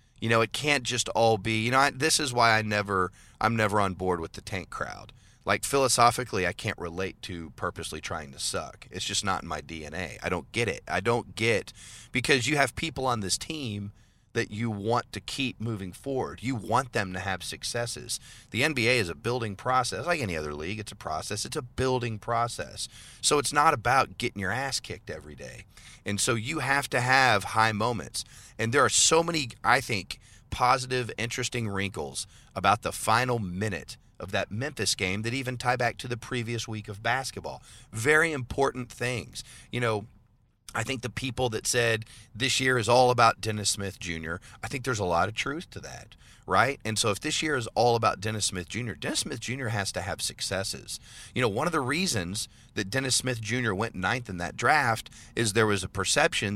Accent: American